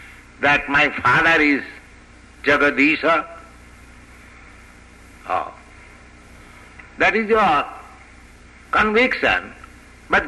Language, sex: English, male